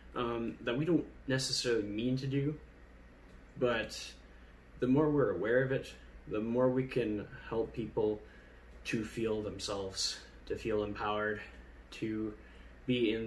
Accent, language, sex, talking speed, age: American, English, male, 135 wpm, 10-29